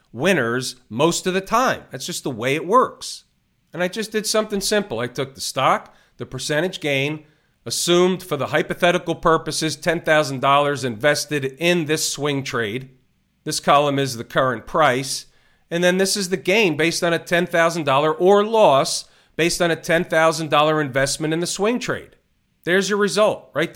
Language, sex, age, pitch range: English, male, 40-59, 135-175 Hz